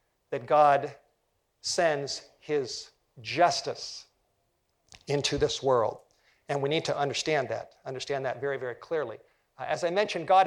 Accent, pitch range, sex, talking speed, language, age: American, 145-195 Hz, male, 130 wpm, English, 50-69